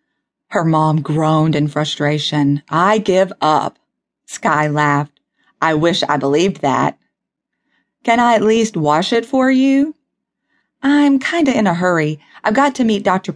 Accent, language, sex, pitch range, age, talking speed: American, English, female, 150-215 Hz, 30-49, 155 wpm